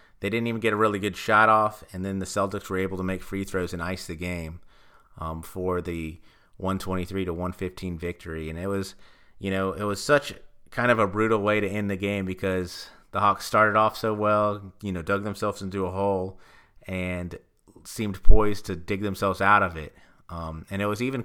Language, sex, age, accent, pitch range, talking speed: English, male, 30-49, American, 95-110 Hz, 215 wpm